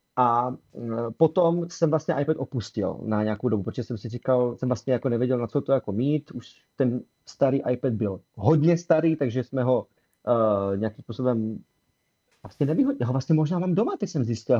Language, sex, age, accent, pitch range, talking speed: Czech, male, 30-49, native, 120-150 Hz, 185 wpm